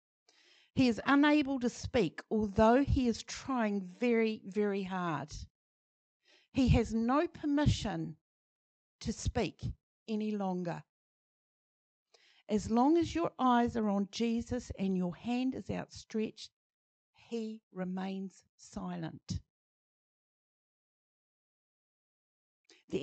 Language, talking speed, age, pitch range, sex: English, 95 wpm, 50-69, 185-235 Hz, female